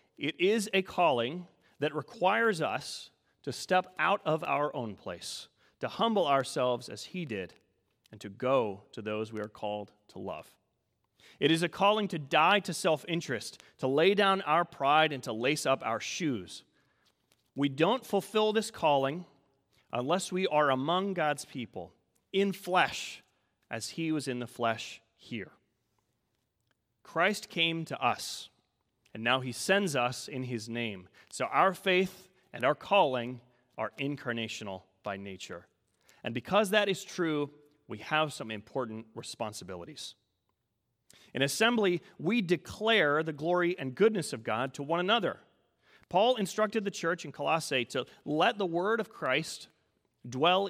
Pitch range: 125-185 Hz